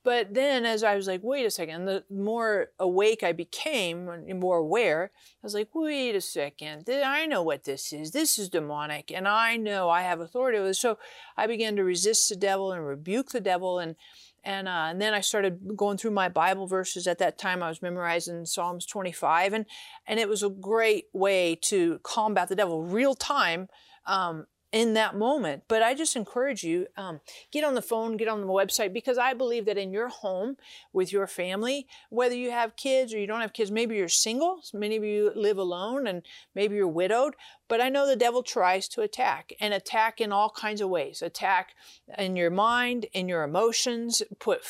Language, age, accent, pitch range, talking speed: English, 40-59, American, 190-255 Hz, 205 wpm